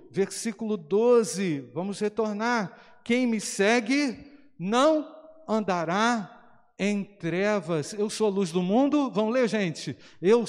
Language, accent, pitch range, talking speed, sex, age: Portuguese, Brazilian, 195-245 Hz, 120 wpm, male, 50-69